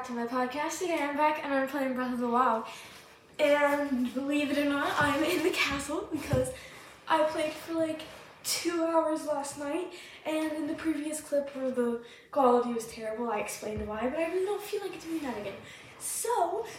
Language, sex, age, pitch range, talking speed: English, female, 10-29, 250-315 Hz, 195 wpm